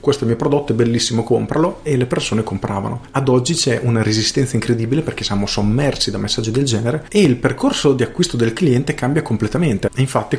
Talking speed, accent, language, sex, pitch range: 190 wpm, native, Italian, male, 115-150 Hz